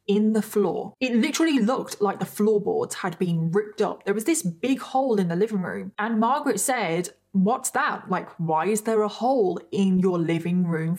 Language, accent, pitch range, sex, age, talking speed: English, British, 185-220 Hz, female, 20-39, 200 wpm